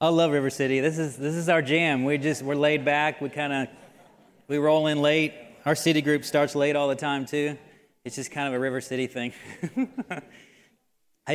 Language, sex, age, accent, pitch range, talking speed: English, male, 30-49, American, 135-160 Hz, 210 wpm